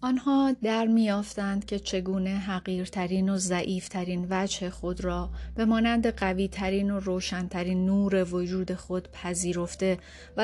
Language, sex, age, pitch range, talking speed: Persian, female, 30-49, 180-210 Hz, 120 wpm